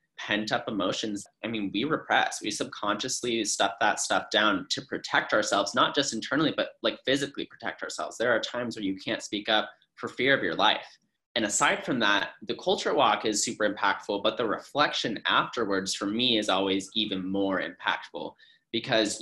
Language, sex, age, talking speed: English, male, 20-39, 185 wpm